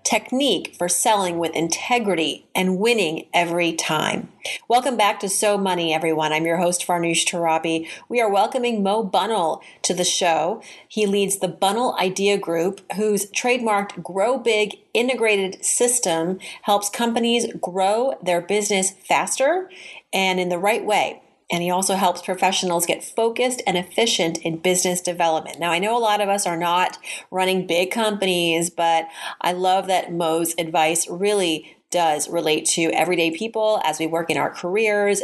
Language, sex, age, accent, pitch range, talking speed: English, female, 30-49, American, 170-210 Hz, 160 wpm